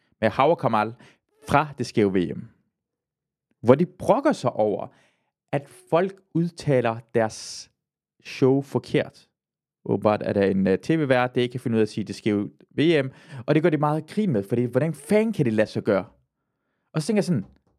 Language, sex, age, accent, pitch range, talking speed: Danish, male, 30-49, native, 120-165 Hz, 185 wpm